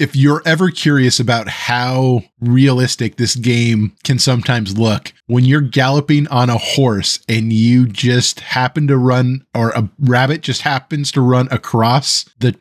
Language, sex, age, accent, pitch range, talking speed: English, male, 20-39, American, 120-150 Hz, 155 wpm